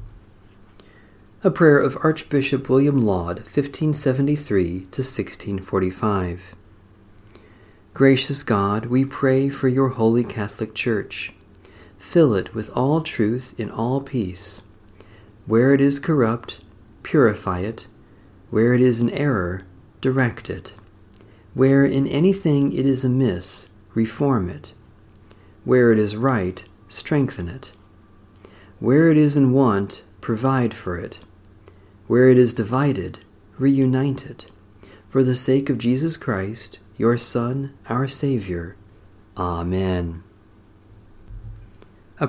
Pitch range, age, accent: 100-135 Hz, 50-69, American